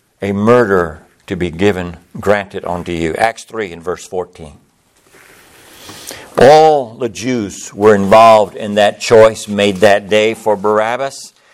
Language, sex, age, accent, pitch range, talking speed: English, male, 60-79, American, 125-185 Hz, 135 wpm